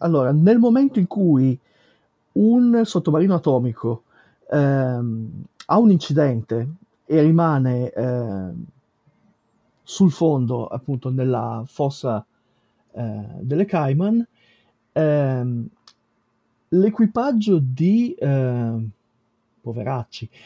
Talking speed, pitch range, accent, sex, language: 80 wpm, 125-180 Hz, native, male, Italian